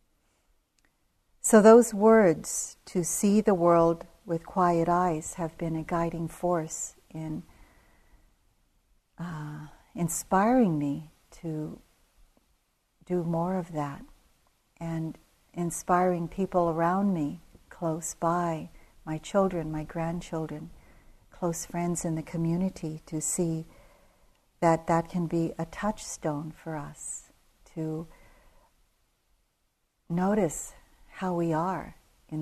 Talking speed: 105 wpm